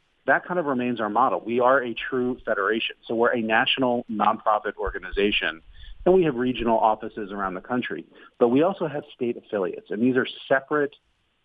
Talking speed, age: 185 wpm, 40-59